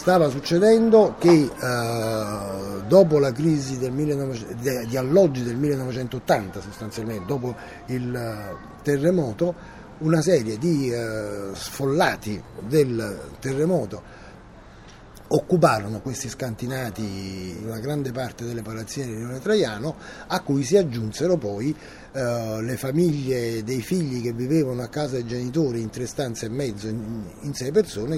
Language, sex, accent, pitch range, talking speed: Italian, male, native, 110-145 Hz, 130 wpm